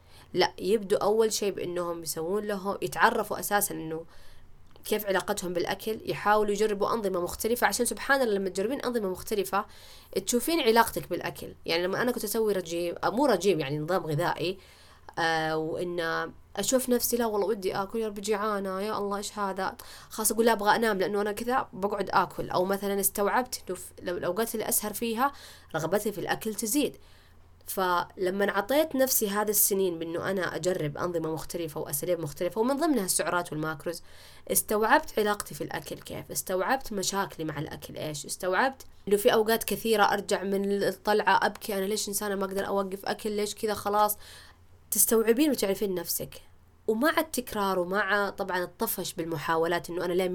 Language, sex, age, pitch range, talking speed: Arabic, female, 20-39, 175-215 Hz, 155 wpm